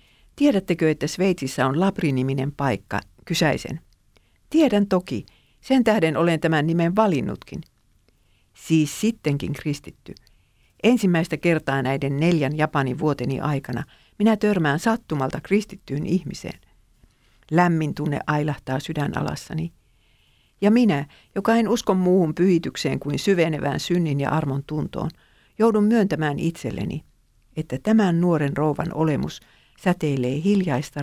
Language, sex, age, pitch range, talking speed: Finnish, female, 50-69, 135-180 Hz, 110 wpm